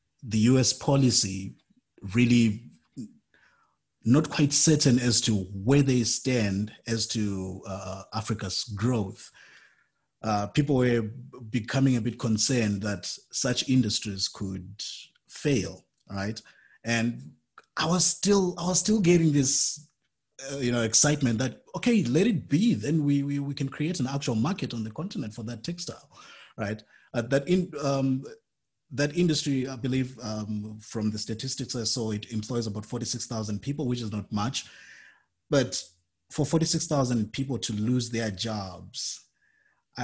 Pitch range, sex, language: 105-135 Hz, male, English